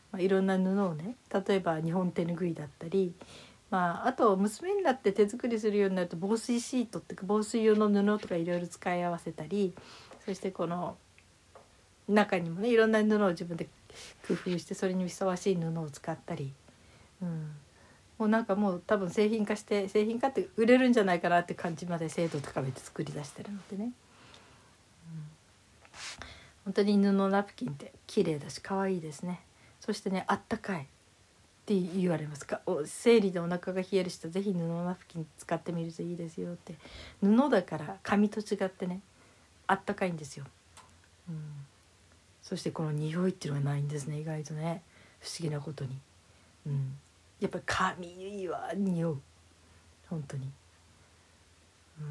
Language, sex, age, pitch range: Japanese, female, 60-79, 150-200 Hz